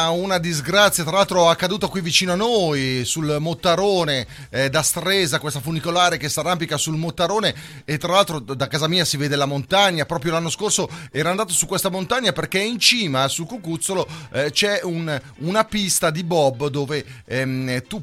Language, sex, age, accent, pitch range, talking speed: Italian, male, 30-49, native, 120-165 Hz, 180 wpm